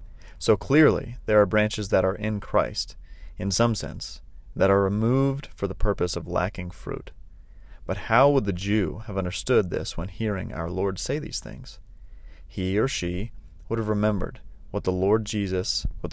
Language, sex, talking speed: English, male, 175 wpm